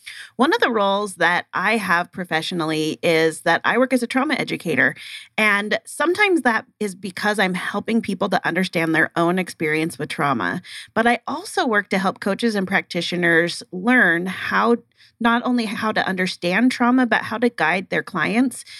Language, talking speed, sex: English, 170 wpm, female